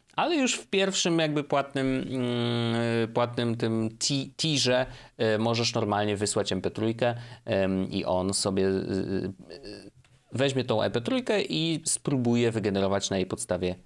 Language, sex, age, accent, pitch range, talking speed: Polish, male, 30-49, native, 100-135 Hz, 130 wpm